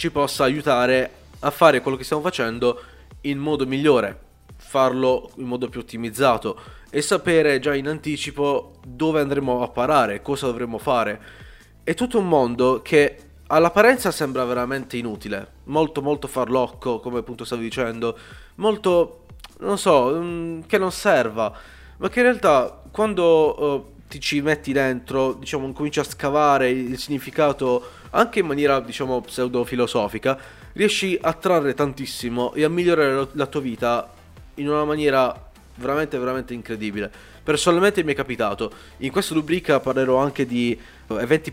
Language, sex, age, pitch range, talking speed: Italian, male, 20-39, 125-150 Hz, 145 wpm